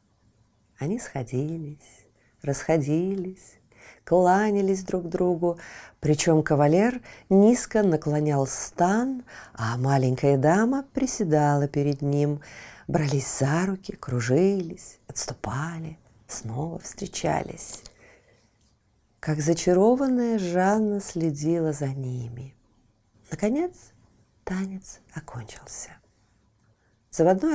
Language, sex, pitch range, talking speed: Russian, female, 135-210 Hz, 75 wpm